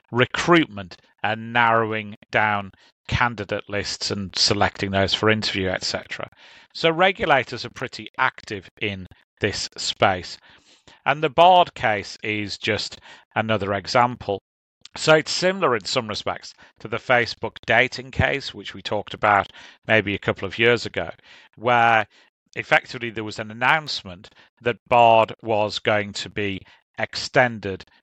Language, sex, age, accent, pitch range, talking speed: English, male, 40-59, British, 100-125 Hz, 135 wpm